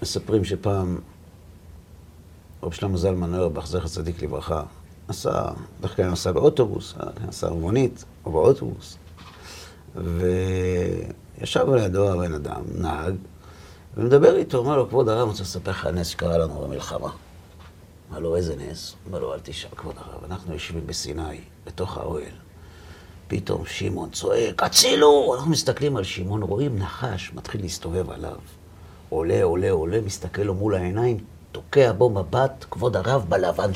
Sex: male